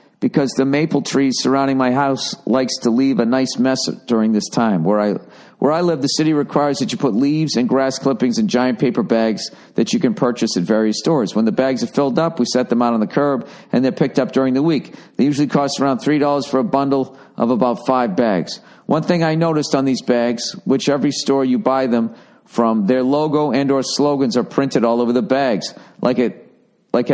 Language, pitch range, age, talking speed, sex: English, 130-155 Hz, 50-69, 225 wpm, male